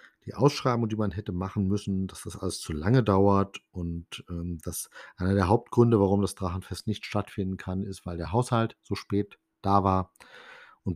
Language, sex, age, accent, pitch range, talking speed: German, male, 50-69, German, 95-115 Hz, 185 wpm